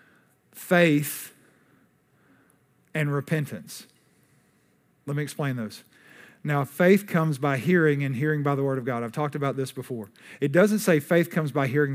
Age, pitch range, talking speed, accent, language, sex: 50-69, 140-170 Hz, 155 wpm, American, English, male